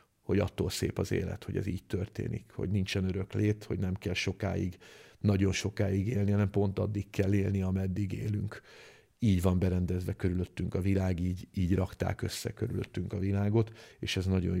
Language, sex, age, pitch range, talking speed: Hungarian, male, 50-69, 95-105 Hz, 175 wpm